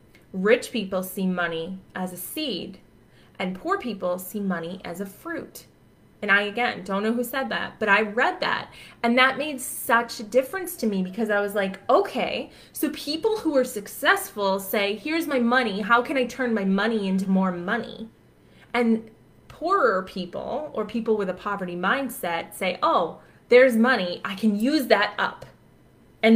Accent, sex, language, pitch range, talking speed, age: American, female, English, 190-245 Hz, 175 wpm, 20-39